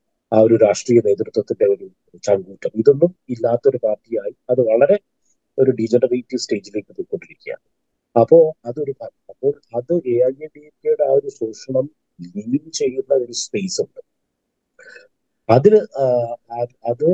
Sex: male